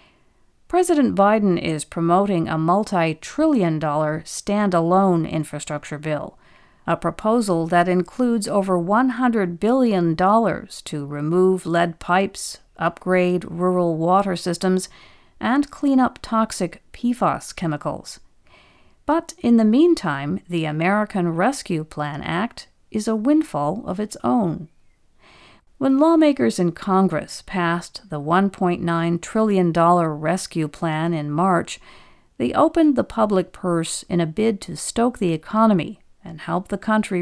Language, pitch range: English, 165-220 Hz